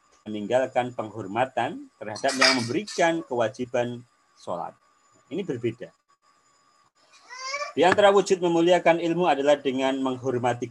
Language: Indonesian